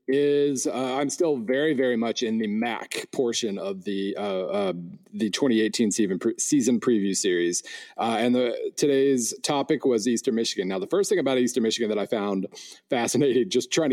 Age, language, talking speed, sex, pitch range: 40-59, English, 185 wpm, male, 125-170 Hz